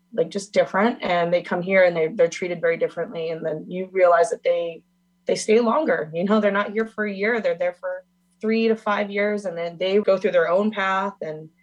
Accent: American